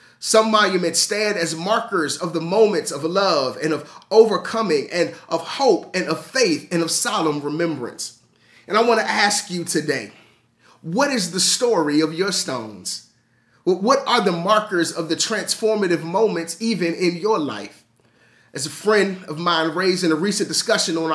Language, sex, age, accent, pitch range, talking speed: English, male, 30-49, American, 160-215 Hz, 170 wpm